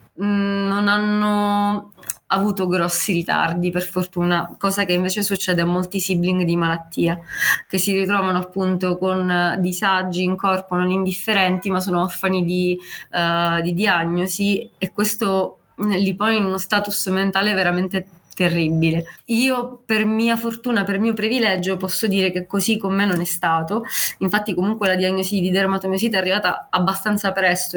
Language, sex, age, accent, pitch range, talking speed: Italian, female, 20-39, native, 175-200 Hz, 150 wpm